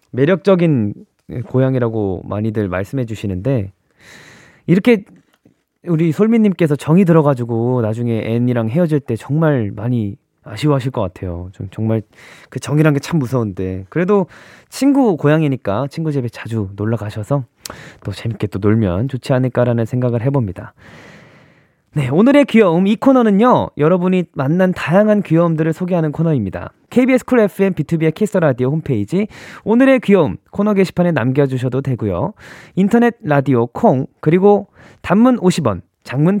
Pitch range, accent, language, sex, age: 120-190 Hz, native, Korean, male, 20-39